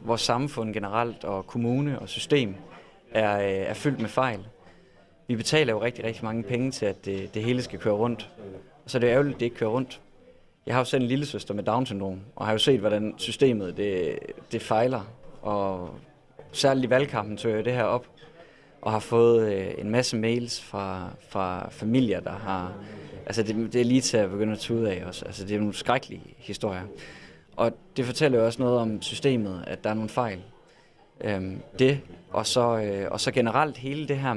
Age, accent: 20-39, native